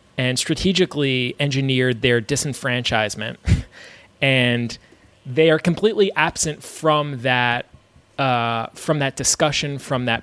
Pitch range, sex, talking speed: 120-145 Hz, male, 105 wpm